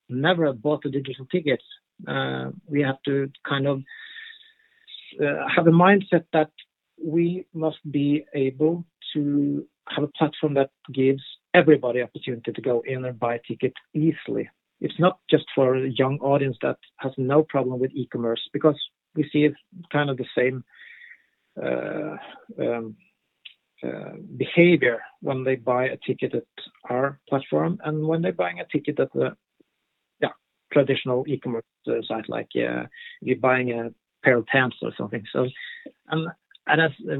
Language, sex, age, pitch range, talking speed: Danish, male, 50-69, 130-165 Hz, 155 wpm